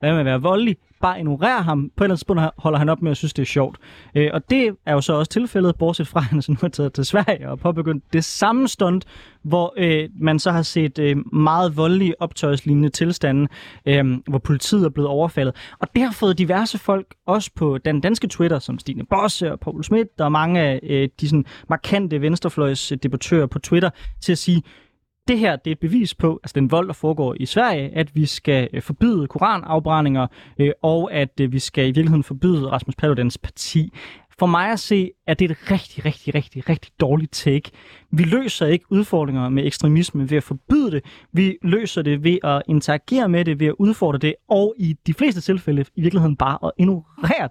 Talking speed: 200 wpm